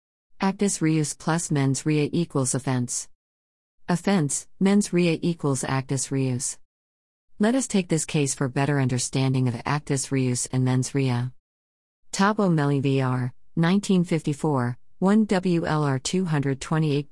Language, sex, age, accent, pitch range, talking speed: English, female, 50-69, American, 130-160 Hz, 140 wpm